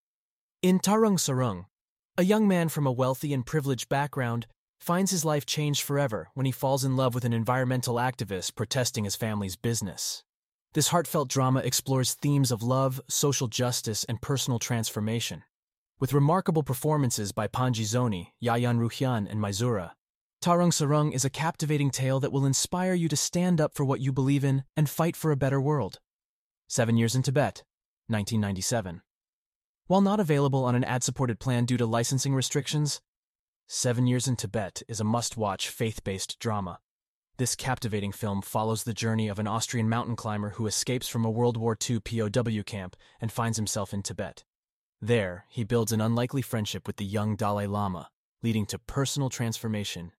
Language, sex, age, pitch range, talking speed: English, male, 30-49, 110-135 Hz, 170 wpm